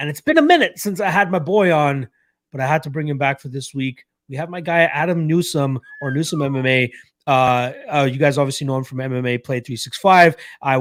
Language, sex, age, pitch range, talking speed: English, male, 30-49, 125-155 Hz, 235 wpm